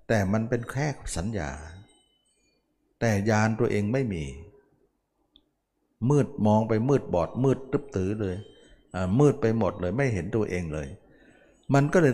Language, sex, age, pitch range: Thai, male, 60-79, 90-120 Hz